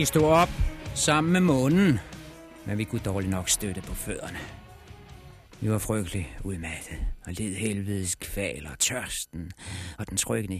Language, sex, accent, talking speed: Danish, male, native, 155 wpm